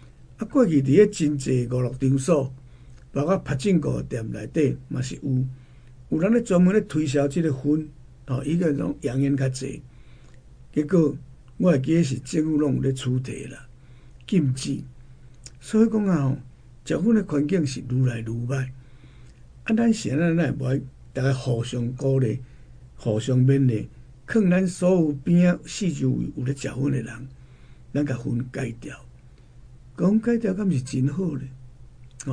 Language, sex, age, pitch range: Chinese, male, 60-79, 125-150 Hz